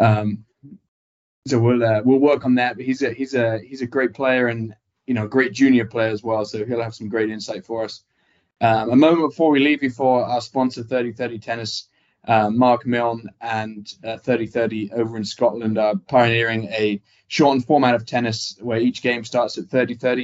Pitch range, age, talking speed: 110-130 Hz, 20-39, 205 wpm